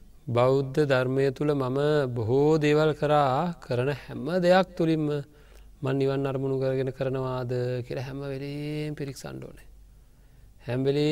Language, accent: English, Indian